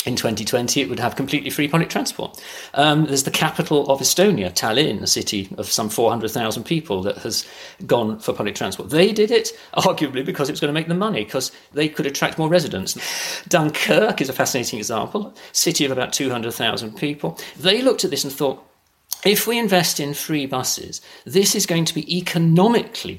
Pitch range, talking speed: 130-180 Hz, 190 wpm